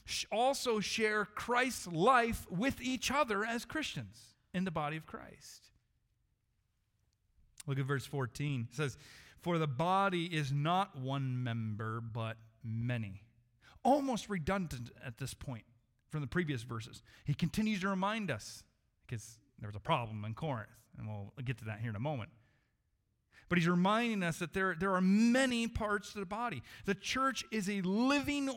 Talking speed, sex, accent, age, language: 160 wpm, male, American, 40-59, English